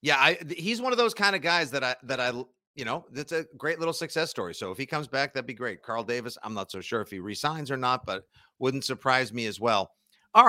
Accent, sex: American, male